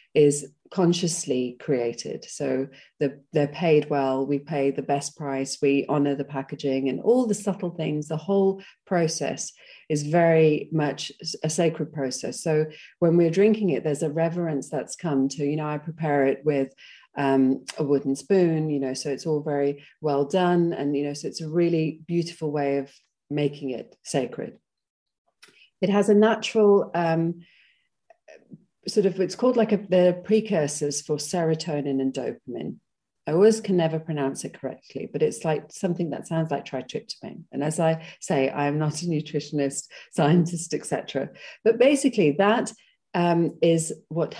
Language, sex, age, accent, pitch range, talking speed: English, female, 40-59, British, 140-175 Hz, 165 wpm